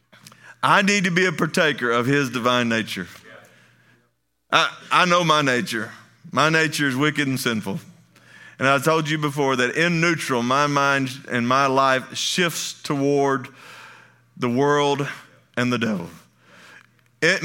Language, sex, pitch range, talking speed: English, male, 135-180 Hz, 145 wpm